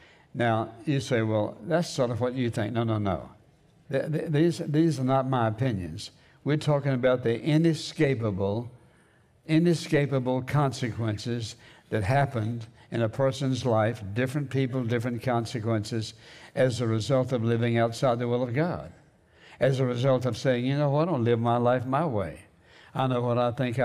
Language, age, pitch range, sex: English, 60-79, 110-135 Hz, male